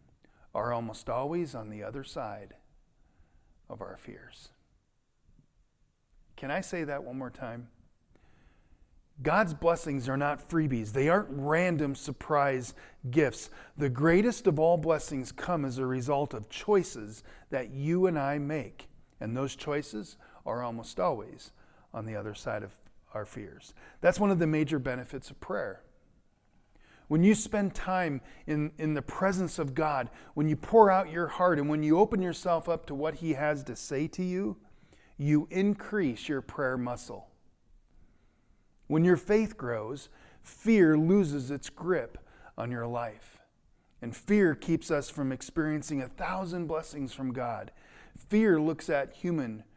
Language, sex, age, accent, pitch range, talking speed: English, male, 40-59, American, 125-170 Hz, 150 wpm